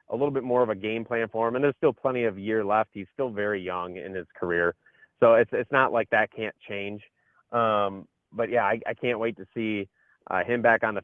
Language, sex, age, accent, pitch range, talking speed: English, male, 30-49, American, 105-125 Hz, 250 wpm